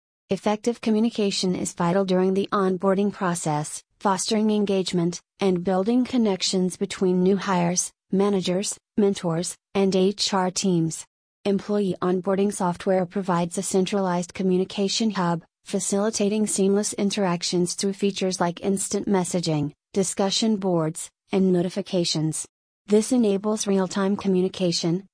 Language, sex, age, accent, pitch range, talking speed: English, female, 30-49, American, 180-200 Hz, 105 wpm